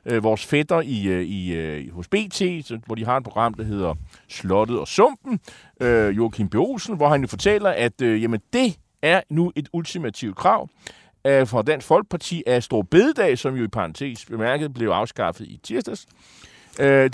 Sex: male